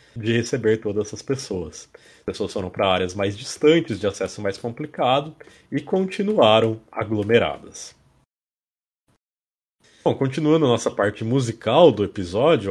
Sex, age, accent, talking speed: male, 30-49, Brazilian, 125 wpm